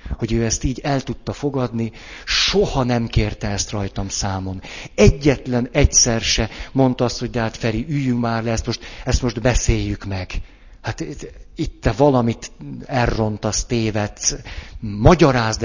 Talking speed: 140 wpm